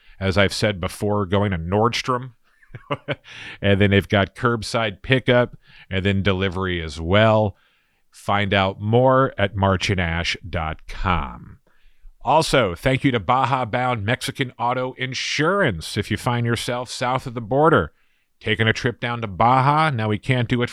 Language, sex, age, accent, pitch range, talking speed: English, male, 50-69, American, 100-130 Hz, 145 wpm